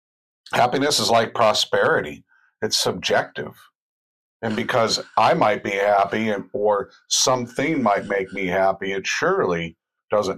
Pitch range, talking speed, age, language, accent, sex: 95-130 Hz, 125 wpm, 50-69, English, American, male